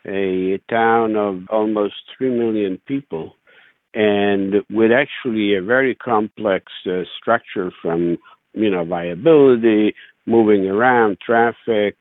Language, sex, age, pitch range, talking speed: English, male, 60-79, 95-115 Hz, 110 wpm